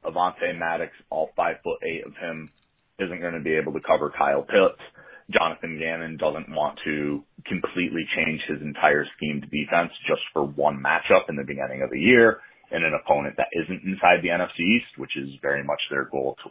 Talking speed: 200 wpm